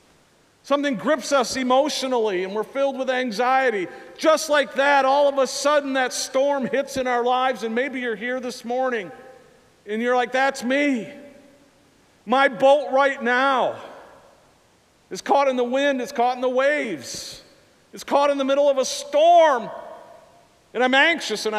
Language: English